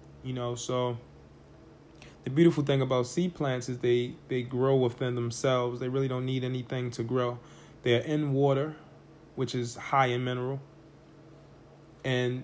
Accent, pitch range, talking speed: American, 130-155 Hz, 150 wpm